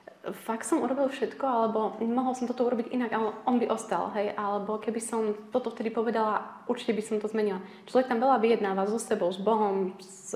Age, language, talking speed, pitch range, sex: 20-39, Slovak, 205 wpm, 195-225 Hz, female